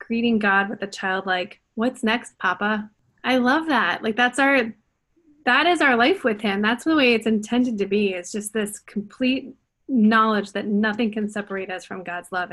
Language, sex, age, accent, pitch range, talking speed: English, female, 30-49, American, 200-240 Hz, 195 wpm